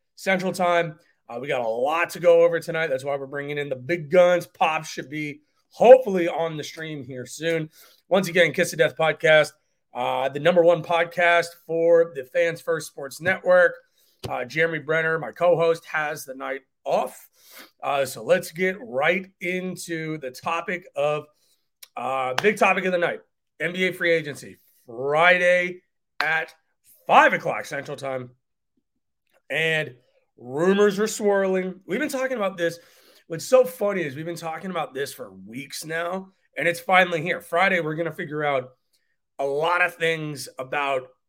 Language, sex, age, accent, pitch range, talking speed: English, male, 30-49, American, 145-180 Hz, 165 wpm